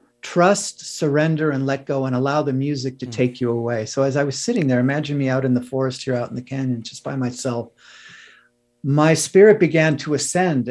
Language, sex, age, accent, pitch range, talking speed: English, male, 50-69, American, 130-160 Hz, 215 wpm